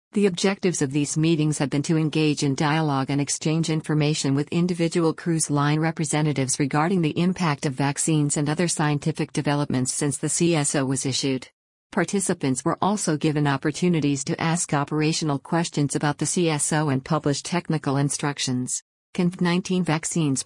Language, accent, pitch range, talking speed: English, American, 145-165 Hz, 155 wpm